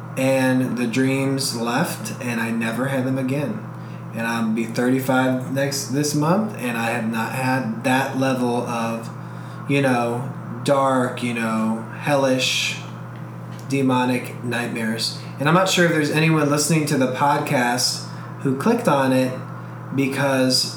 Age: 20-39